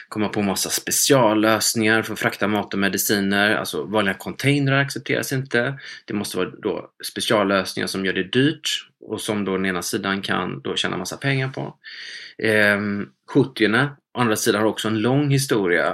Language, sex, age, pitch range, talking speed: Swedish, male, 20-39, 100-125 Hz, 175 wpm